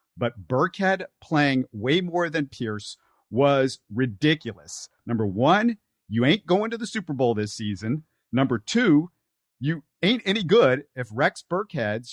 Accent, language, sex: American, English, male